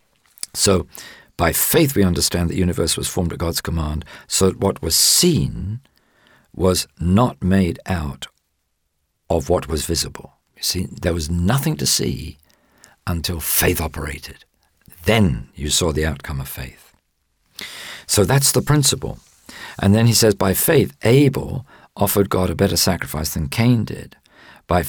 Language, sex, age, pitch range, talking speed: English, male, 50-69, 80-105 Hz, 150 wpm